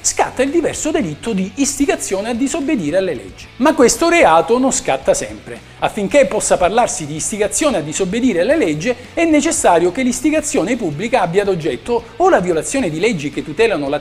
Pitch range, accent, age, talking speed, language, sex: 200-300 Hz, native, 50-69, 175 wpm, Italian, male